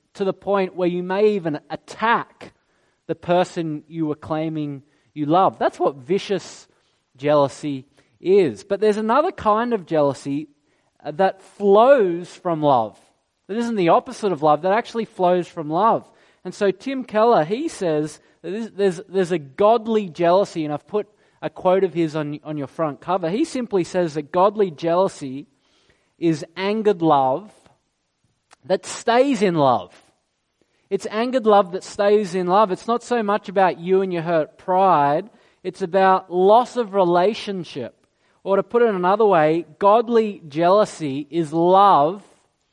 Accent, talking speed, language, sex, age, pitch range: Australian, 155 wpm, English, male, 20-39, 160-210 Hz